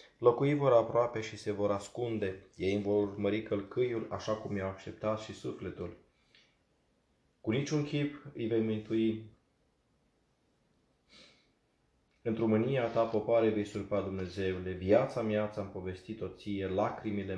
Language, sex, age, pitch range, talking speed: Romanian, male, 20-39, 95-115 Hz, 120 wpm